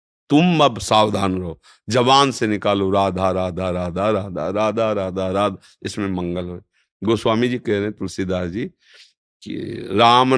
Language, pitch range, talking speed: Hindi, 105-140 Hz, 155 wpm